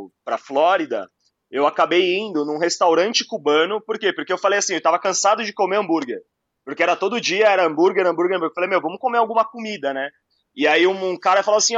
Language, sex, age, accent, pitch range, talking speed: Portuguese, male, 20-39, Brazilian, 170-230 Hz, 215 wpm